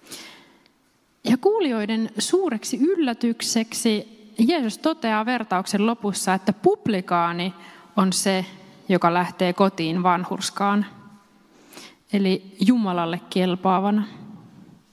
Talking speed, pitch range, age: 75 wpm, 185-240 Hz, 30-49